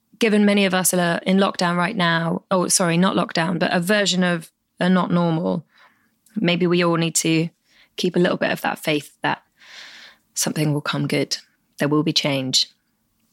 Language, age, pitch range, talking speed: English, 20-39, 170-205 Hz, 185 wpm